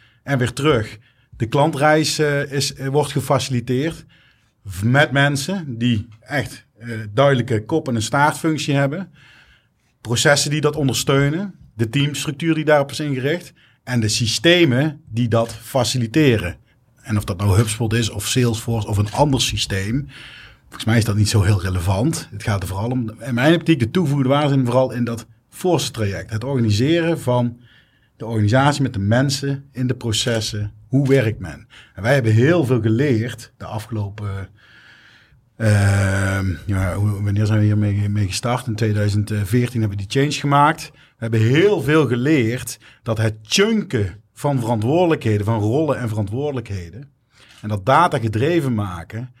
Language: Dutch